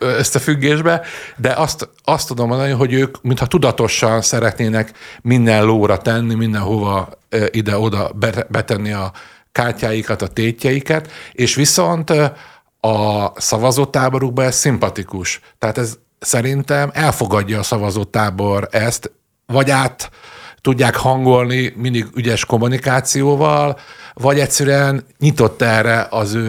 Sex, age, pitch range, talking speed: male, 50-69, 110-130 Hz, 110 wpm